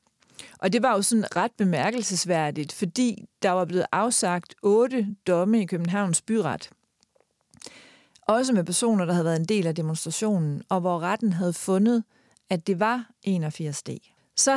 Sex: female